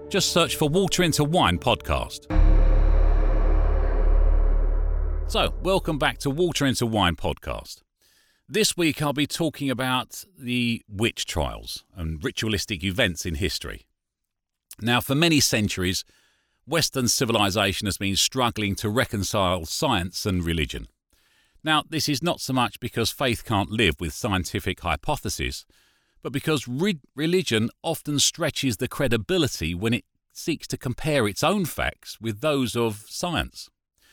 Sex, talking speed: male, 130 wpm